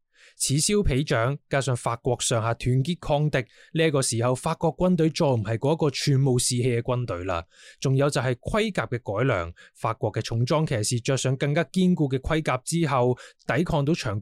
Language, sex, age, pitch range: Chinese, male, 20-39, 115-155 Hz